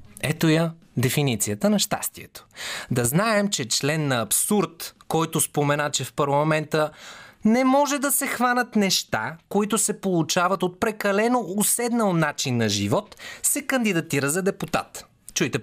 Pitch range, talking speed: 135-220 Hz, 140 wpm